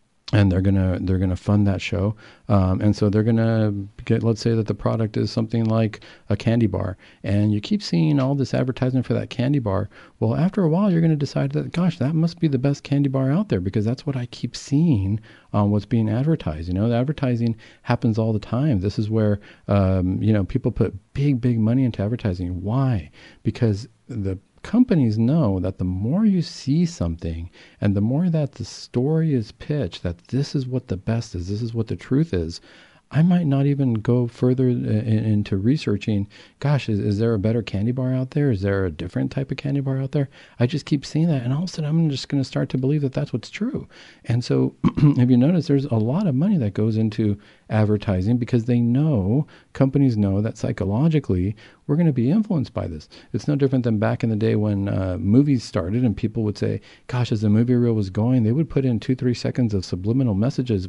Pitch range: 105-135 Hz